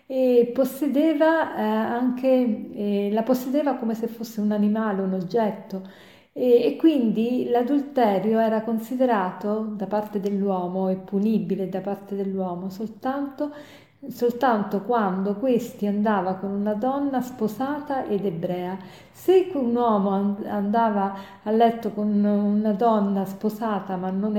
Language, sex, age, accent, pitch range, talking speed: Italian, female, 40-59, native, 195-245 Hz, 120 wpm